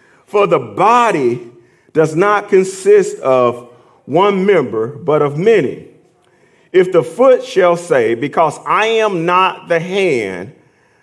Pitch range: 170-280 Hz